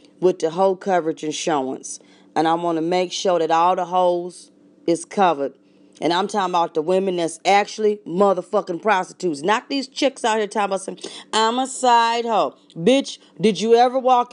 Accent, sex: American, female